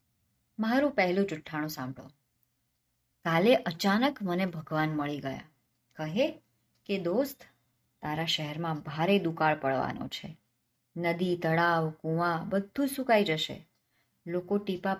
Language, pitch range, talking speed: Gujarati, 165-230 Hz, 80 wpm